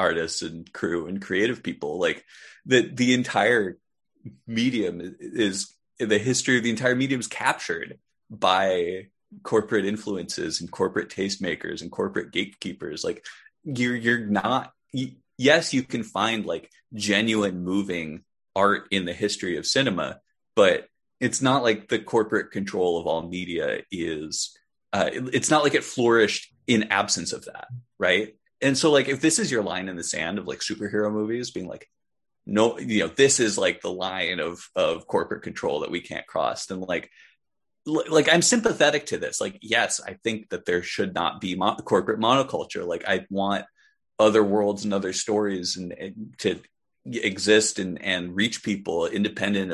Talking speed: 170 wpm